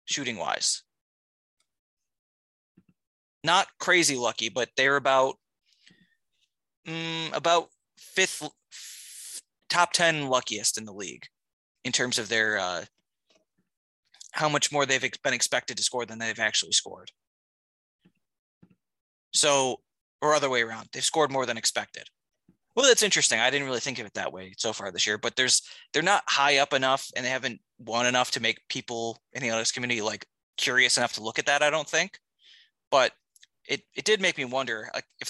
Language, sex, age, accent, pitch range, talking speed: English, male, 20-39, American, 115-150 Hz, 165 wpm